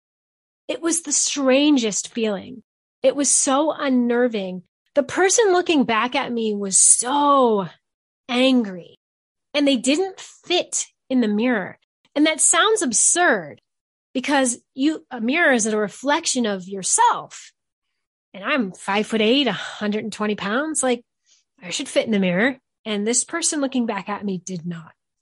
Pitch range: 200-260 Hz